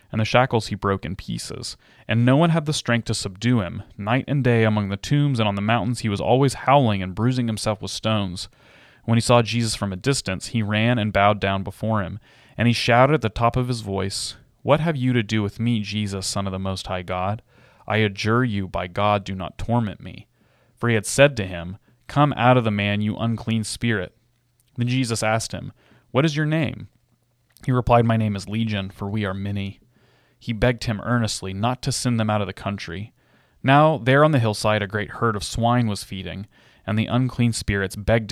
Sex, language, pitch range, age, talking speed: male, English, 100-125 Hz, 30-49, 220 wpm